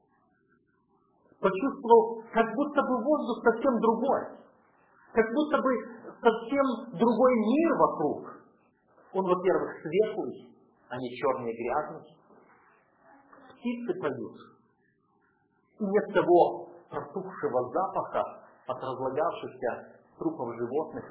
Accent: native